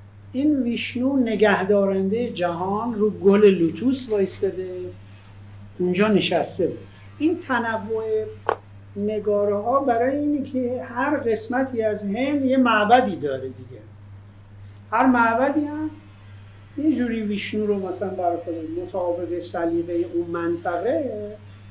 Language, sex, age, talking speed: Persian, male, 50-69, 105 wpm